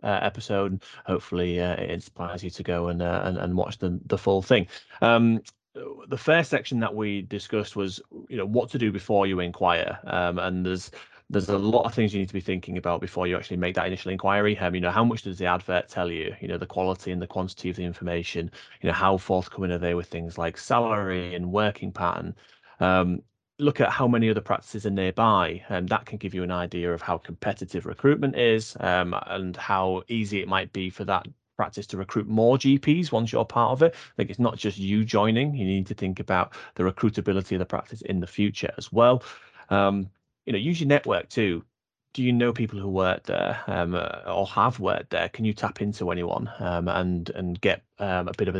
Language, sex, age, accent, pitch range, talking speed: English, male, 30-49, British, 90-110 Hz, 225 wpm